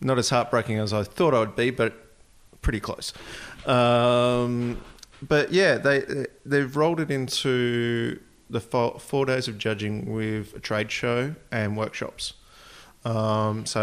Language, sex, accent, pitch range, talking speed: English, male, Australian, 105-125 Hz, 150 wpm